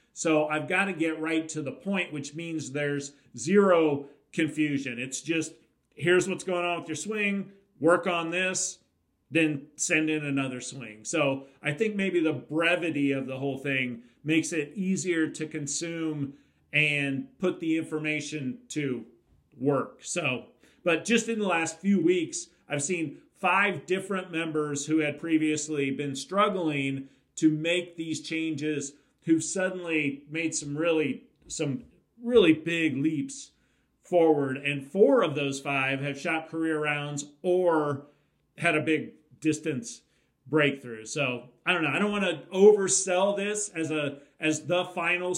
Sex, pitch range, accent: male, 145-175 Hz, American